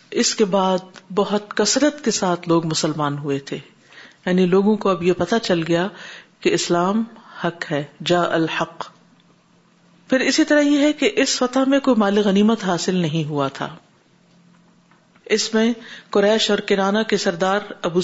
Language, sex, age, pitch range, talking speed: Urdu, female, 50-69, 170-215 Hz, 165 wpm